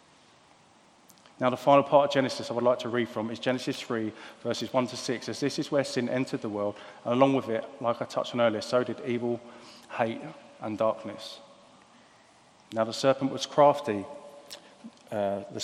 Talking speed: 190 wpm